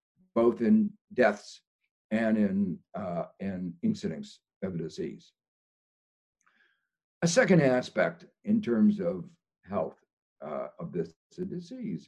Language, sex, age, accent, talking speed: Danish, male, 60-79, American, 105 wpm